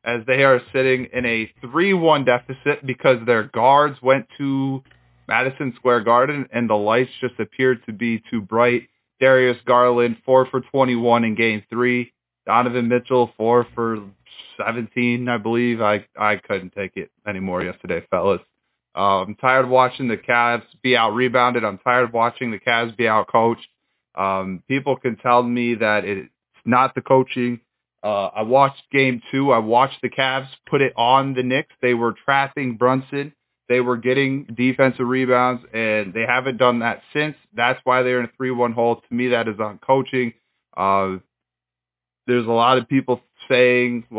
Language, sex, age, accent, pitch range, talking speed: English, male, 20-39, American, 110-130 Hz, 170 wpm